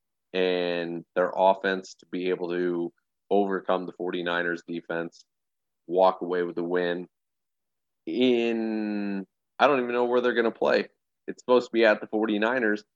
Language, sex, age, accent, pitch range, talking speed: English, male, 30-49, American, 90-115 Hz, 155 wpm